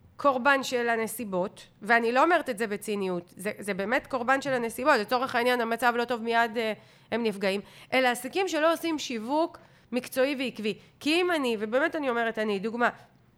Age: 30-49